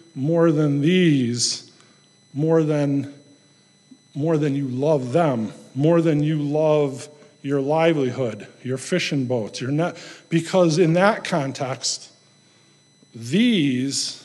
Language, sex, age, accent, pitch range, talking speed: English, male, 50-69, American, 135-165 Hz, 110 wpm